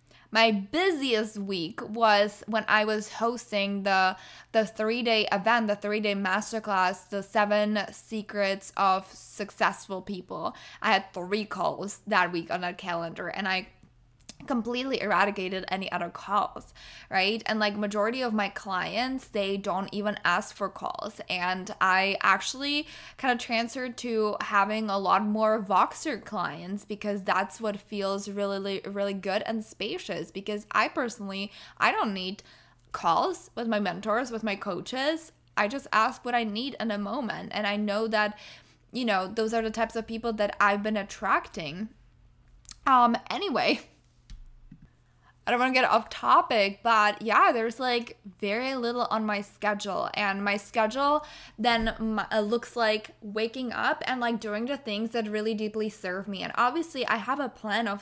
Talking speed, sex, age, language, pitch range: 160 wpm, female, 10-29, English, 200-230 Hz